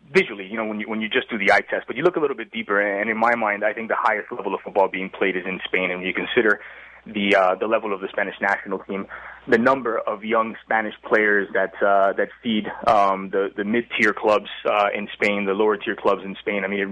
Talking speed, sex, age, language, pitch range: 260 wpm, male, 20-39, English, 100-110 Hz